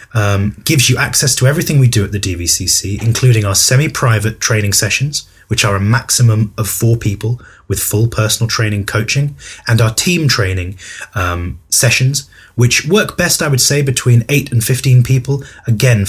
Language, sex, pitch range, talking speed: English, male, 100-130 Hz, 170 wpm